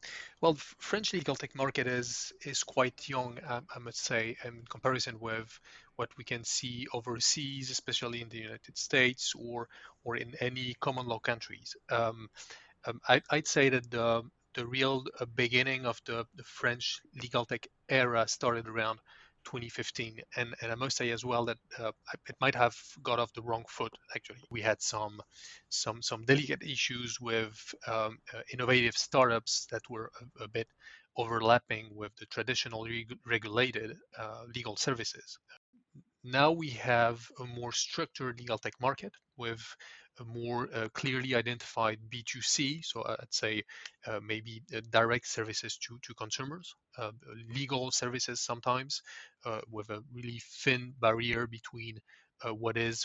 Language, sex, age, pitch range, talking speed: English, male, 30-49, 115-130 Hz, 160 wpm